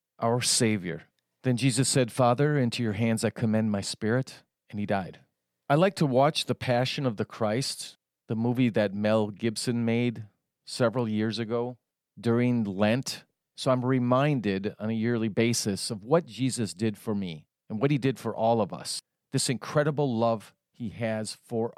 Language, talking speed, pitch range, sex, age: English, 175 wpm, 115-145 Hz, male, 40-59